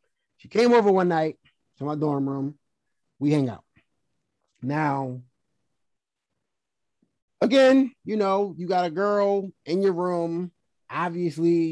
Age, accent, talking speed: 30-49, American, 120 wpm